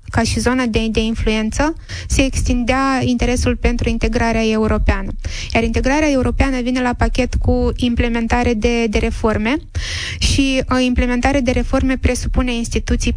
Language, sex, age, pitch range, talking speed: Romanian, female, 20-39, 230-255 Hz, 130 wpm